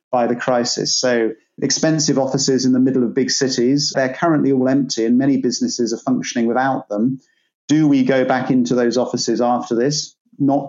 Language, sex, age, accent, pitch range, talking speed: English, male, 30-49, British, 125-150 Hz, 180 wpm